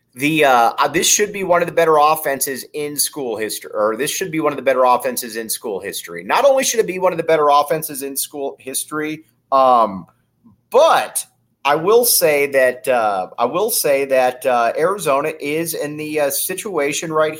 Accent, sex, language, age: American, male, English, 30-49